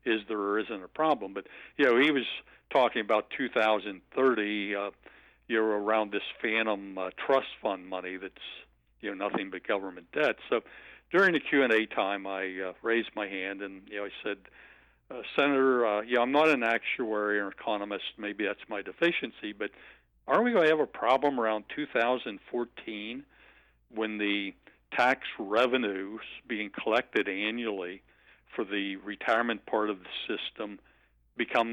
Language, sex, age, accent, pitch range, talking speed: English, male, 60-79, American, 100-115 Hz, 160 wpm